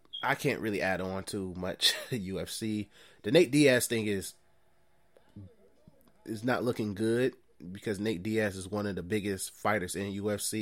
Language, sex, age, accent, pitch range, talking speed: English, male, 20-39, American, 95-110 Hz, 160 wpm